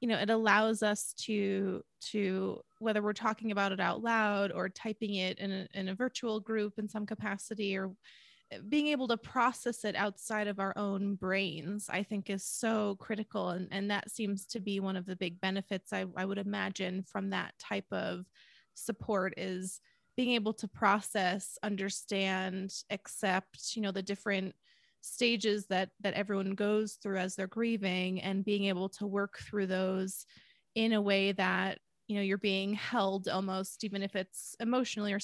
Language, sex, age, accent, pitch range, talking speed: English, female, 20-39, American, 190-215 Hz, 175 wpm